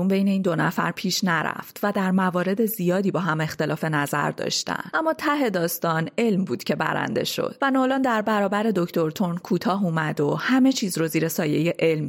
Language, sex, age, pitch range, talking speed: Persian, female, 30-49, 160-230 Hz, 185 wpm